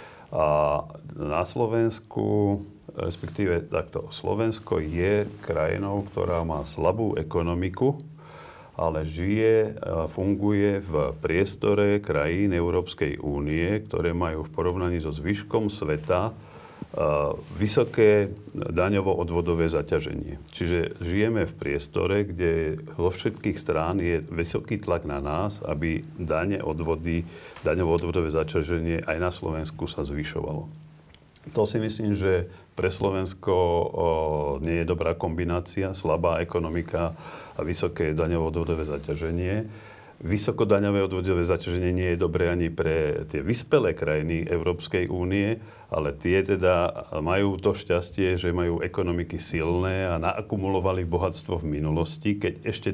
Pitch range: 80-100 Hz